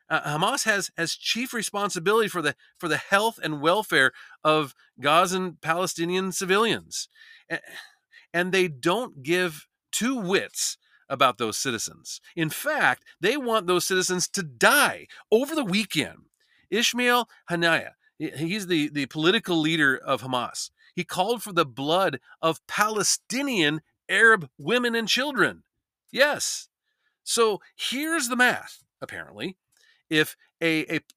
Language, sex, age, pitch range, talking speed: English, male, 40-59, 155-225 Hz, 130 wpm